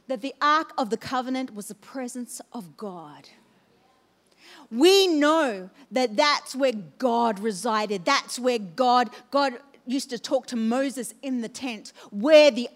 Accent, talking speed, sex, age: Australian, 150 wpm, female, 40-59